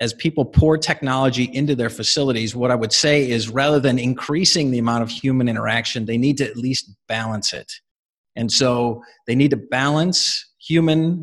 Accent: American